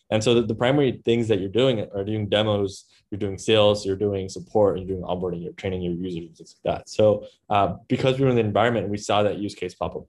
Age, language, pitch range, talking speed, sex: 10-29, English, 95-110 Hz, 260 wpm, male